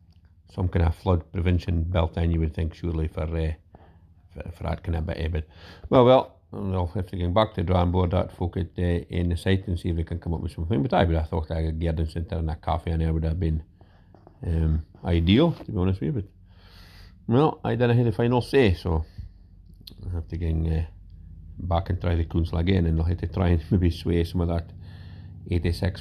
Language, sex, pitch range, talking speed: English, male, 85-95 Hz, 240 wpm